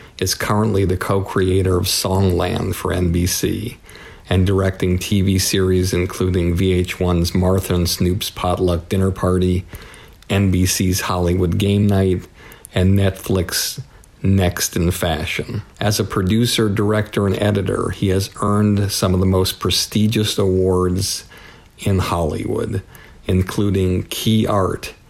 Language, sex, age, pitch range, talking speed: English, male, 50-69, 90-105 Hz, 115 wpm